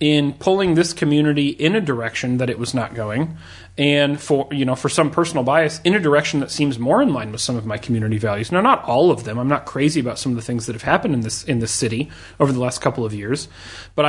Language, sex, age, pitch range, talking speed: English, male, 30-49, 120-150 Hz, 265 wpm